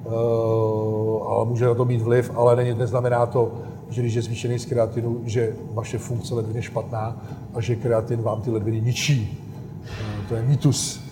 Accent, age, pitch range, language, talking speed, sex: native, 40-59, 120-135 Hz, Czech, 185 wpm, male